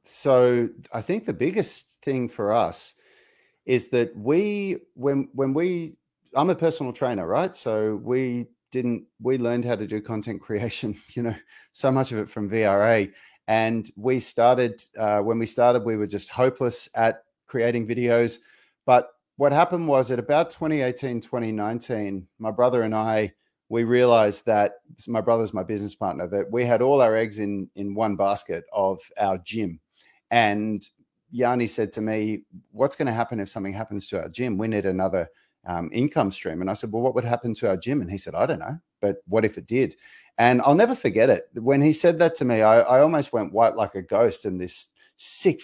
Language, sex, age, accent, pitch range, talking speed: English, male, 40-59, Australian, 105-130 Hz, 195 wpm